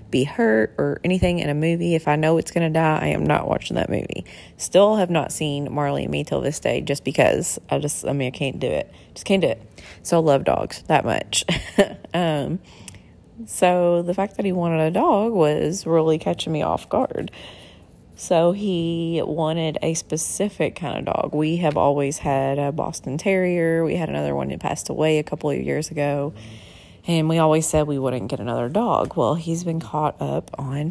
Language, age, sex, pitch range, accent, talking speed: English, 30-49, female, 140-170 Hz, American, 205 wpm